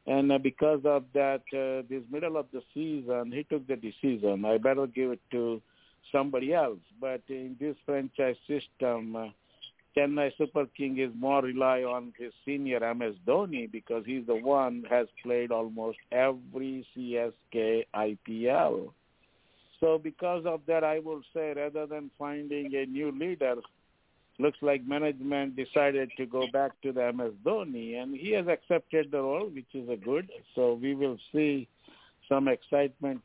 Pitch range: 125-155 Hz